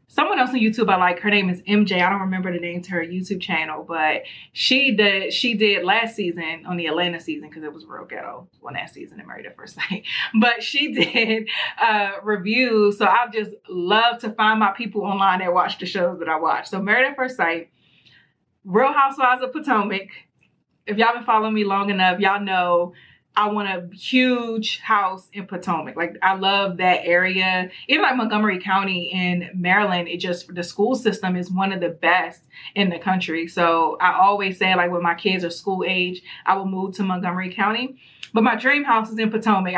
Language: English